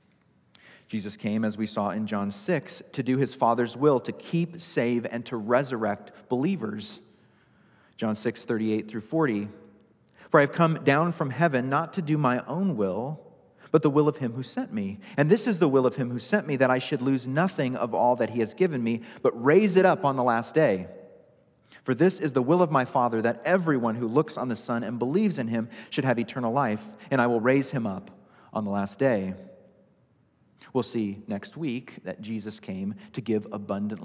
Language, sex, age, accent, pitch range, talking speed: English, male, 40-59, American, 115-160 Hz, 210 wpm